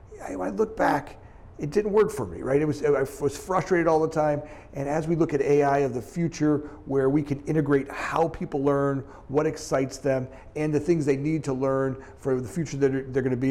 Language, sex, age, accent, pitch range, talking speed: English, male, 40-59, American, 130-150 Hz, 245 wpm